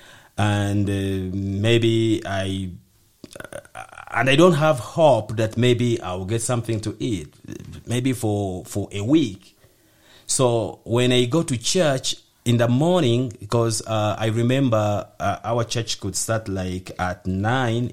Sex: male